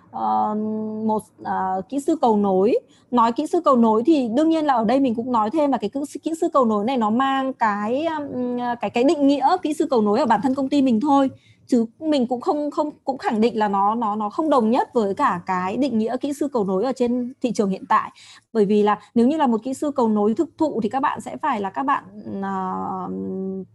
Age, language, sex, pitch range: 20-39, Japanese, female, 205-265 Hz